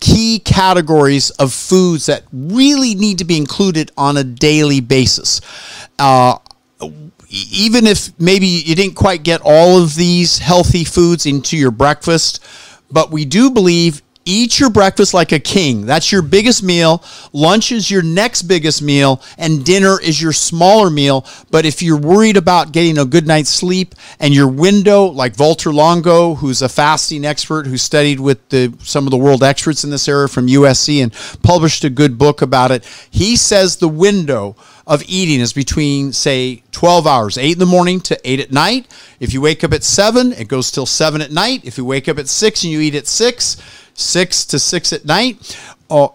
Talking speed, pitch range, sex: 190 wpm, 140-185 Hz, male